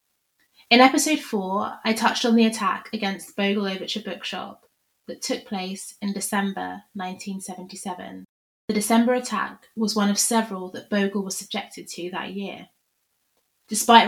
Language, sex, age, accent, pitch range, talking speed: English, female, 20-39, British, 190-225 Hz, 140 wpm